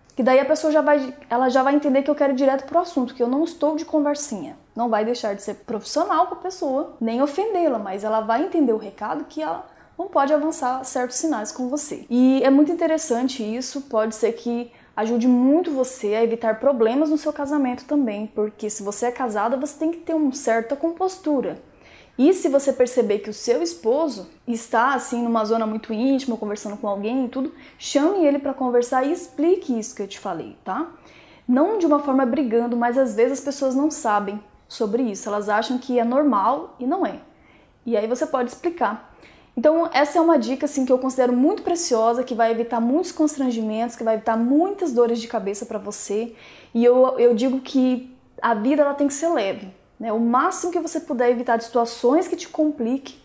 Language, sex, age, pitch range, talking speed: Portuguese, female, 10-29, 230-300 Hz, 205 wpm